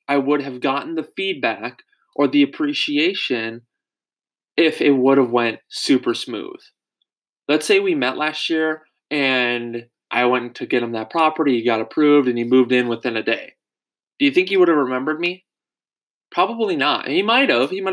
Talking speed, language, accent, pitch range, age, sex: 185 wpm, English, American, 120-155 Hz, 20-39, male